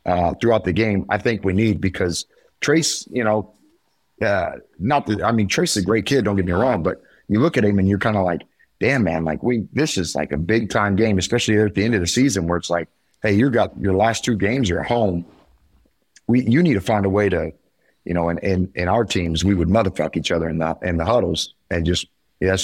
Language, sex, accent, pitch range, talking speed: English, male, American, 95-115 Hz, 255 wpm